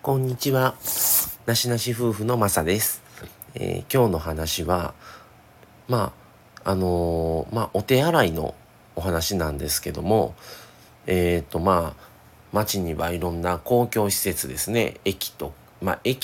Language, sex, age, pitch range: Japanese, male, 40-59, 85-115 Hz